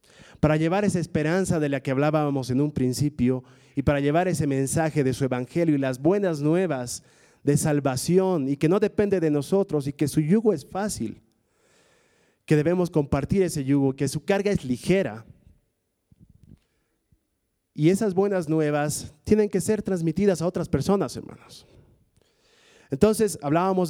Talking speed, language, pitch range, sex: 155 wpm, Spanish, 135-185 Hz, male